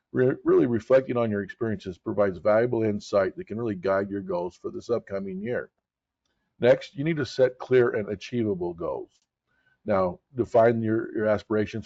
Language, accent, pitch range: English, American, 100-125 Hz